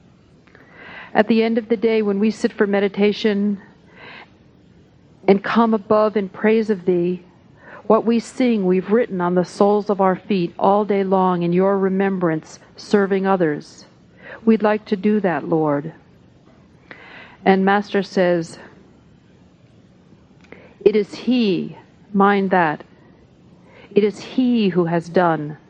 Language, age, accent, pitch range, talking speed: English, 50-69, American, 180-215 Hz, 135 wpm